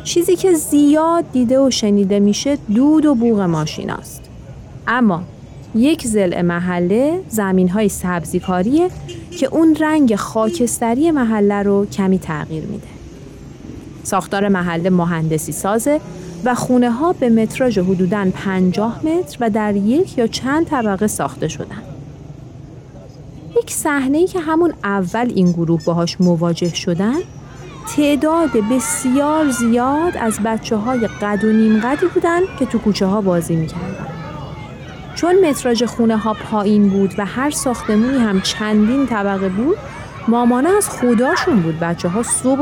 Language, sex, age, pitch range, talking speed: Persian, female, 30-49, 180-270 Hz, 130 wpm